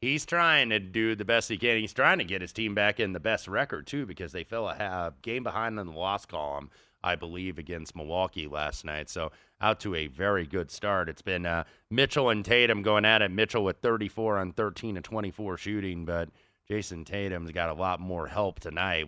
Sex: male